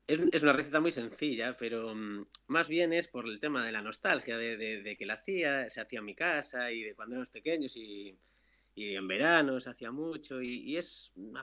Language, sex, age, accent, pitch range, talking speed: Spanish, male, 20-39, Spanish, 105-125 Hz, 220 wpm